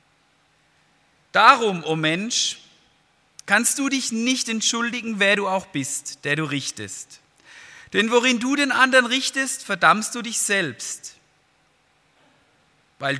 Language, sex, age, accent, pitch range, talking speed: German, male, 40-59, German, 155-225 Hz, 120 wpm